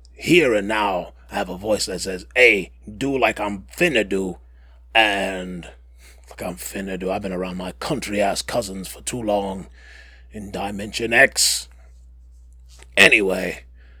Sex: male